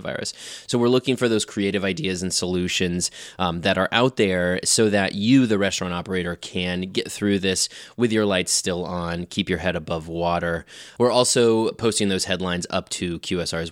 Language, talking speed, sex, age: English, 185 wpm, male, 20-39